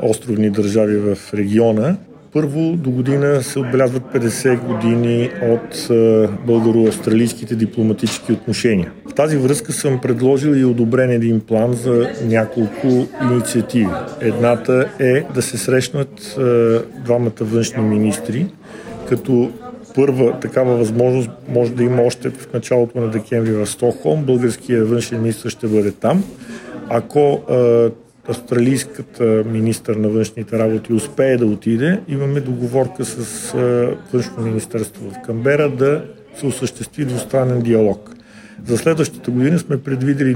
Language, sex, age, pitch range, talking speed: Bulgarian, male, 50-69, 115-135 Hz, 125 wpm